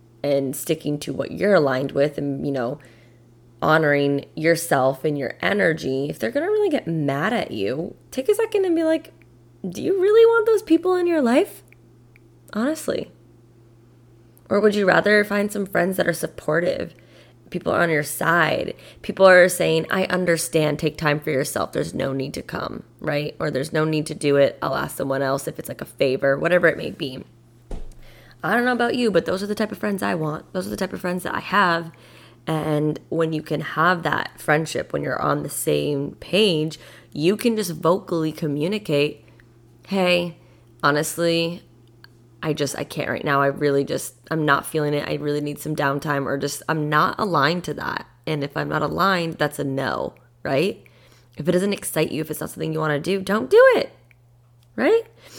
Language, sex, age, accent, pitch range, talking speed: English, female, 20-39, American, 135-180 Hz, 200 wpm